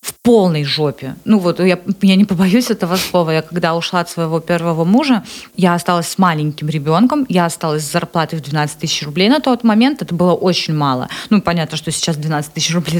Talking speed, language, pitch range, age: 210 wpm, Russian, 170-210 Hz, 20-39